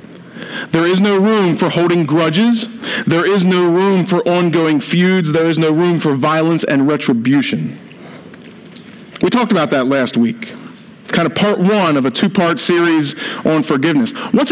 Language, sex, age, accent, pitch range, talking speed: English, male, 40-59, American, 180-235 Hz, 160 wpm